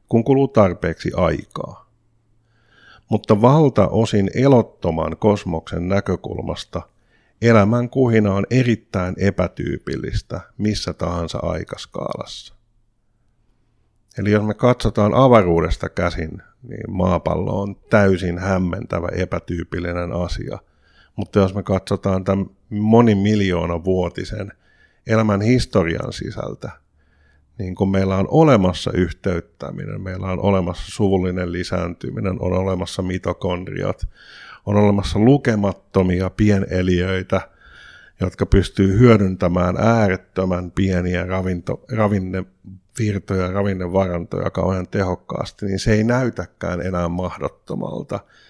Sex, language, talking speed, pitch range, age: male, Finnish, 90 wpm, 90-110 Hz, 50-69